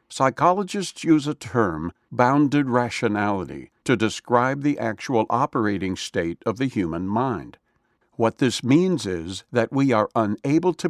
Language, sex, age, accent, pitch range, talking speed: English, male, 60-79, American, 115-150 Hz, 140 wpm